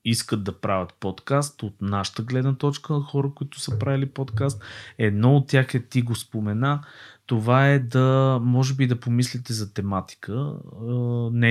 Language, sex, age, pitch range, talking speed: Bulgarian, male, 30-49, 100-130 Hz, 160 wpm